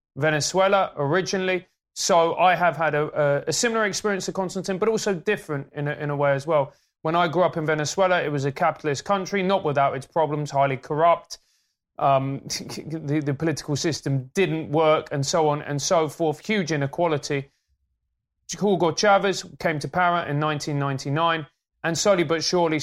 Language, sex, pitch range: English, male, 145-170 Hz